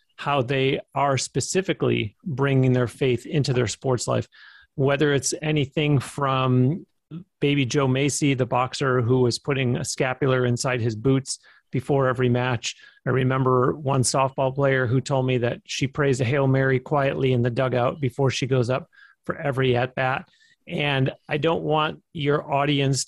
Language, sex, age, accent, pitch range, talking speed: English, male, 40-59, American, 130-145 Hz, 165 wpm